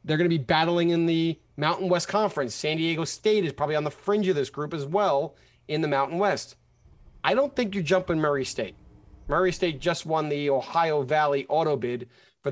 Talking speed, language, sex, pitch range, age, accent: 215 wpm, English, male, 140-185 Hz, 30-49, American